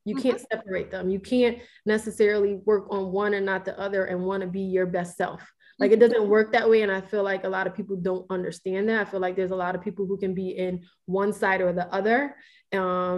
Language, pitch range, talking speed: English, 195-230 Hz, 255 wpm